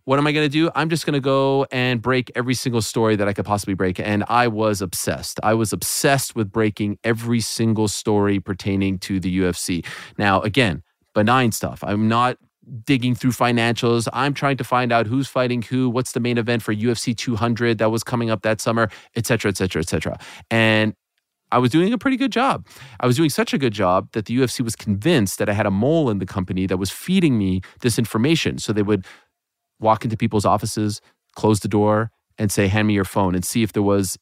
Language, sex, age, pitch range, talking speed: English, male, 30-49, 105-130 Hz, 225 wpm